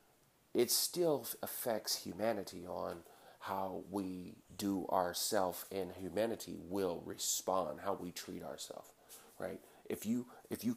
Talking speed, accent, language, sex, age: 125 wpm, American, English, male, 40-59